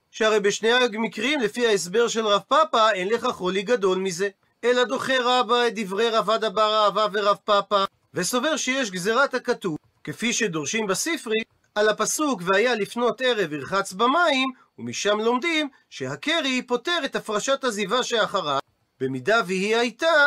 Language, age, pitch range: Hebrew, 40-59, 200-255 Hz